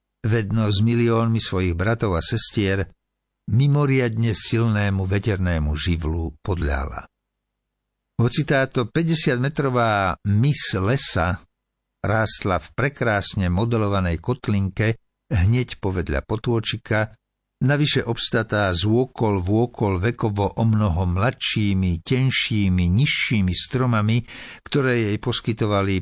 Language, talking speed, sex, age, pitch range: Slovak, 95 wpm, male, 60-79, 95-125 Hz